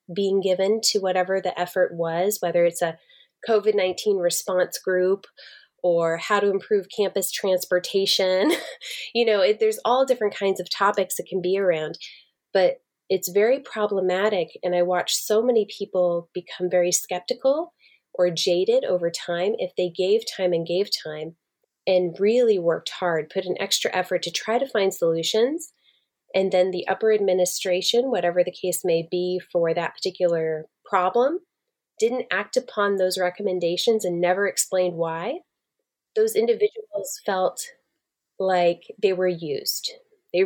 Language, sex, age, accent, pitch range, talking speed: English, female, 20-39, American, 180-220 Hz, 150 wpm